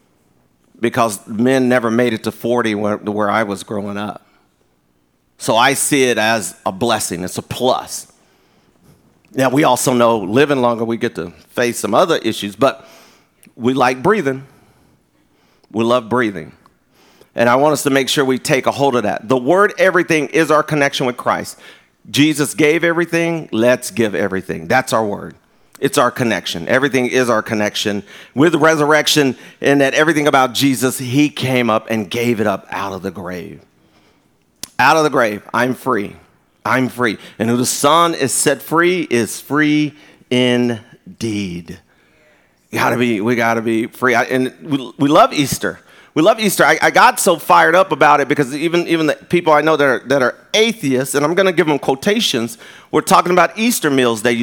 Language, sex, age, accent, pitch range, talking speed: English, male, 40-59, American, 110-150 Hz, 180 wpm